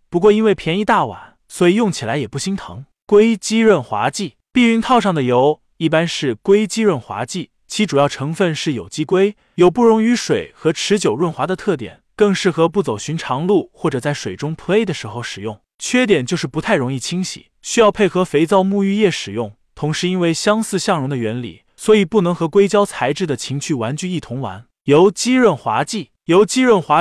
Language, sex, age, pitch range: Chinese, male, 20-39, 145-205 Hz